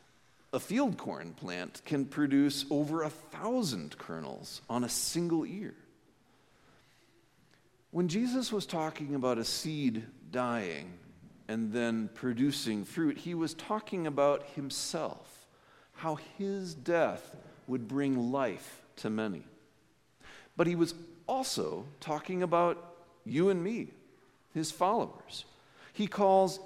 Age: 50-69